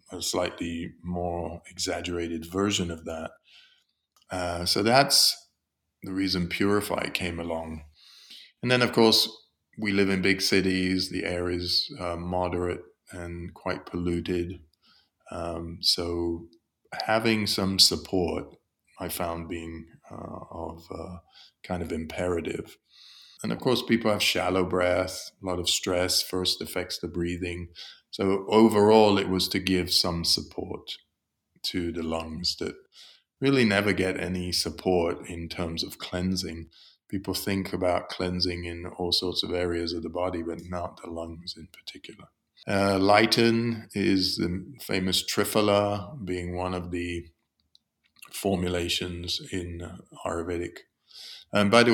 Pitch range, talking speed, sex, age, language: 85-95 Hz, 135 wpm, male, 30-49, English